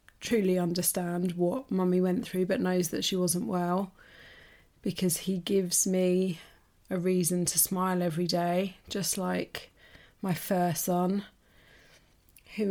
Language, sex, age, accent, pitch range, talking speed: English, female, 30-49, British, 175-200 Hz, 130 wpm